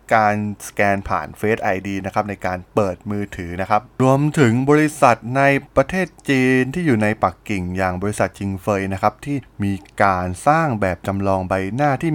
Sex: male